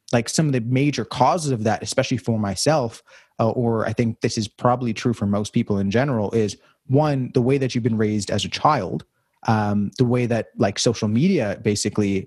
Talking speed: 210 wpm